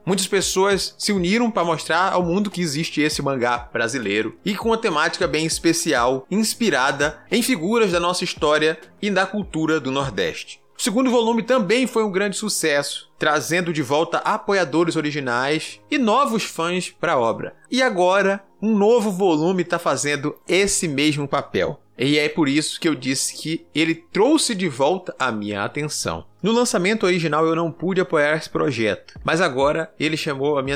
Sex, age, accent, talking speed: male, 20-39, Brazilian, 175 wpm